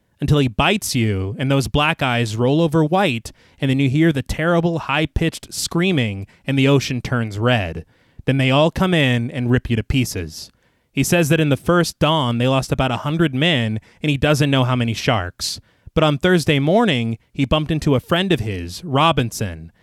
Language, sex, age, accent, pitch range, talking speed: English, male, 30-49, American, 115-155 Hz, 200 wpm